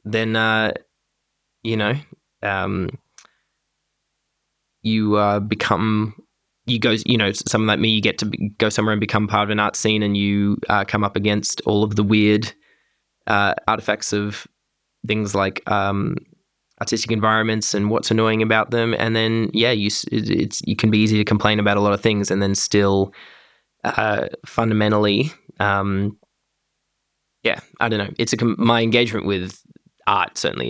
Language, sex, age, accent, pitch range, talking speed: English, male, 20-39, Australian, 100-115 Hz, 165 wpm